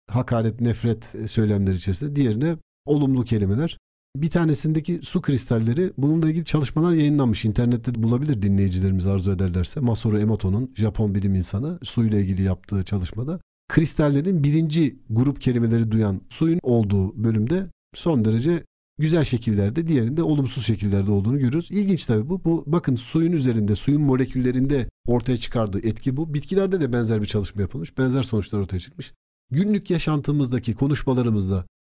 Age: 50-69